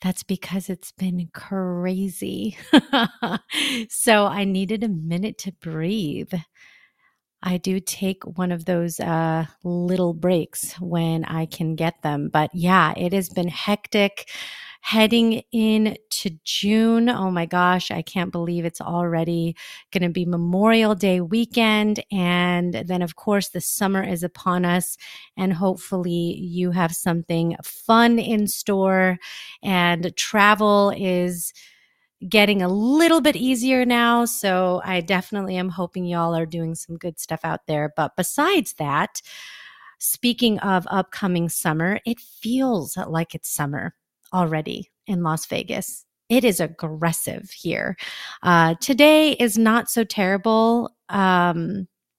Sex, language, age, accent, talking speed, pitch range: female, English, 30-49, American, 135 wpm, 170-210 Hz